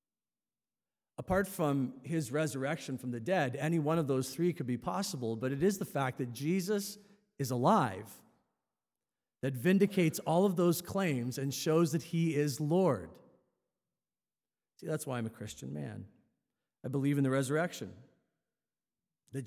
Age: 40-59